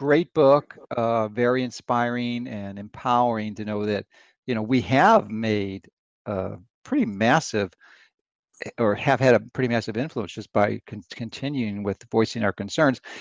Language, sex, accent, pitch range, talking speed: English, male, American, 120-150 Hz, 150 wpm